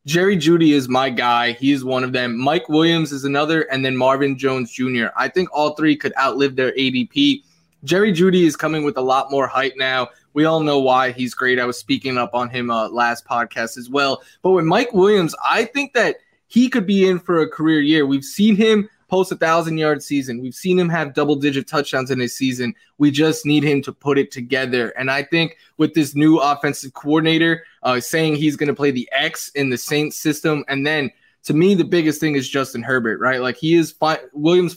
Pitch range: 130-170 Hz